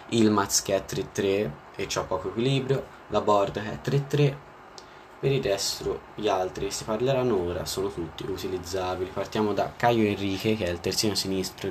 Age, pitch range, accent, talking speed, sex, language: 20-39, 95-115 Hz, native, 175 wpm, male, Italian